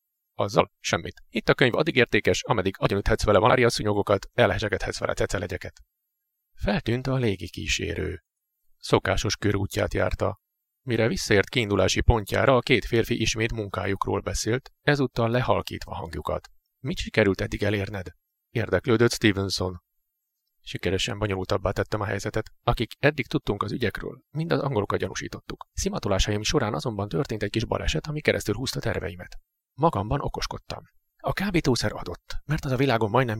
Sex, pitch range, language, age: male, 95-125 Hz, Hungarian, 30-49